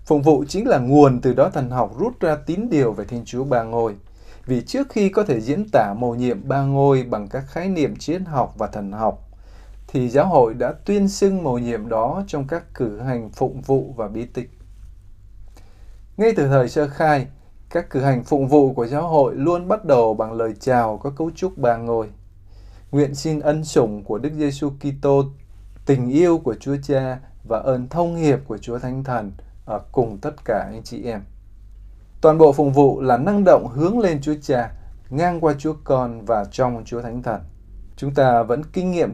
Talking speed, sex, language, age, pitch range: 200 wpm, male, Vietnamese, 20-39, 110-150 Hz